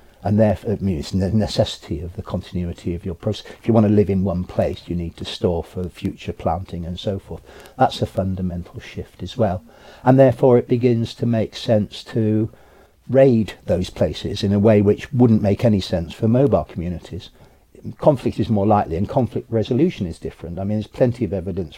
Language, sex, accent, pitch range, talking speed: English, male, British, 90-110 Hz, 200 wpm